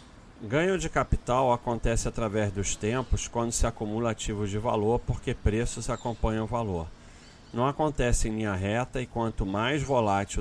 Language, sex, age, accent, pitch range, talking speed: Portuguese, male, 40-59, Brazilian, 100-120 Hz, 155 wpm